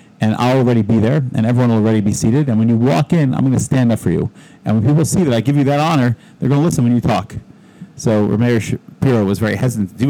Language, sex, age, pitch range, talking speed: English, male, 30-49, 105-130 Hz, 285 wpm